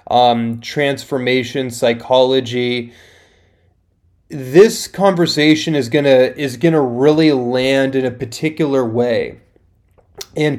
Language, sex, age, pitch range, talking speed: English, male, 30-49, 125-145 Hz, 90 wpm